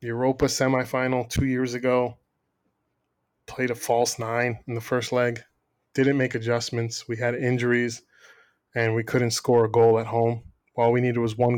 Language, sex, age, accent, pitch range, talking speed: English, male, 20-39, American, 115-130 Hz, 165 wpm